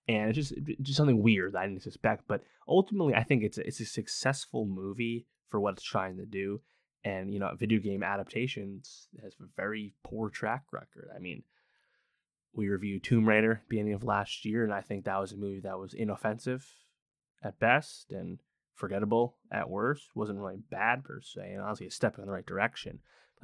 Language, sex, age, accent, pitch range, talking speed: English, male, 20-39, American, 100-115 Hz, 200 wpm